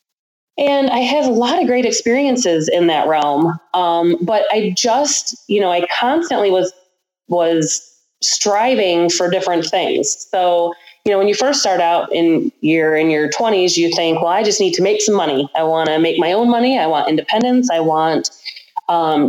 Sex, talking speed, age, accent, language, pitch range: female, 190 wpm, 20-39, American, English, 170-225 Hz